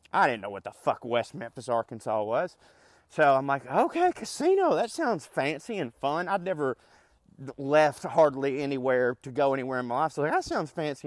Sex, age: male, 30-49